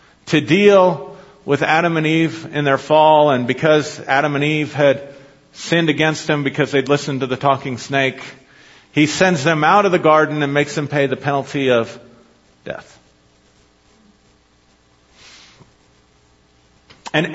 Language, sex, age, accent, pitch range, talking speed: English, male, 50-69, American, 135-185 Hz, 140 wpm